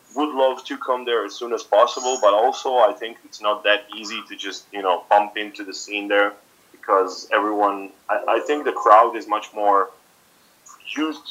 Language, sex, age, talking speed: English, male, 30-49, 195 wpm